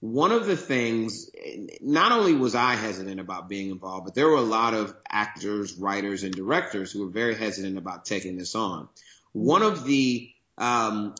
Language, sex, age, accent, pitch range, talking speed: English, male, 30-49, American, 100-120 Hz, 180 wpm